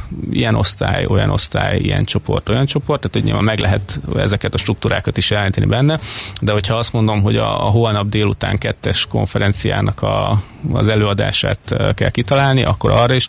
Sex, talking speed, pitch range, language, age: male, 170 wpm, 100-120 Hz, Hungarian, 30-49